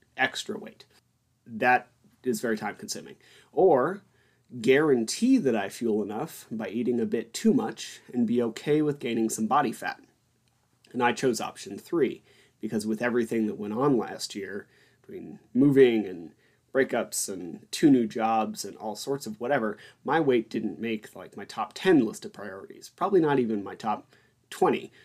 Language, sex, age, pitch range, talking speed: English, male, 30-49, 110-130 Hz, 165 wpm